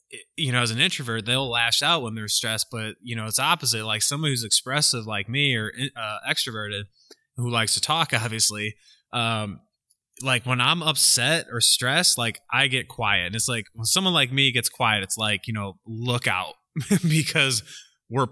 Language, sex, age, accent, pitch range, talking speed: English, male, 20-39, American, 110-135 Hz, 190 wpm